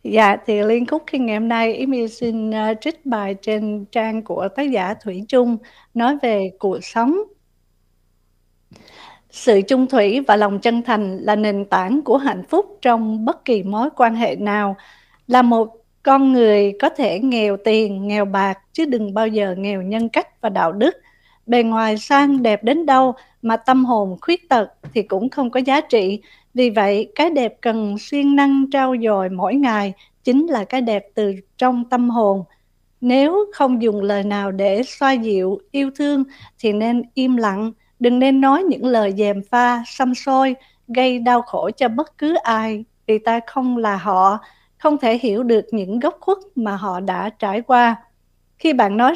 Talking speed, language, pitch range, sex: 180 wpm, Vietnamese, 210-265 Hz, female